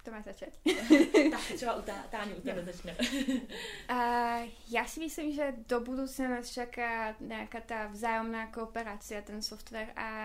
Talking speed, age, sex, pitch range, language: 125 wpm, 20-39, female, 215-235 Hz, Czech